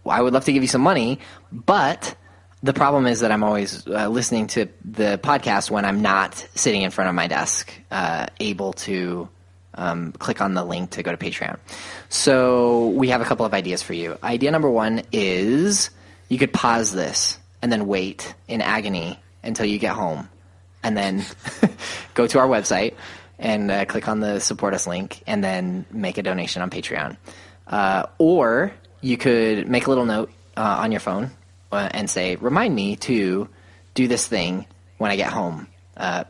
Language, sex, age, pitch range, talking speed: English, male, 20-39, 95-115 Hz, 190 wpm